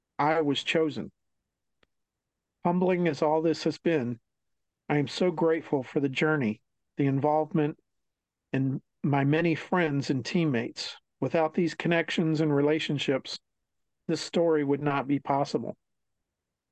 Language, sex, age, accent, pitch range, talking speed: English, male, 50-69, American, 140-160 Hz, 125 wpm